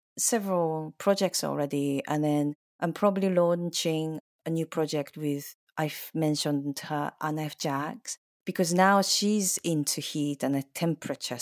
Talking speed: 135 wpm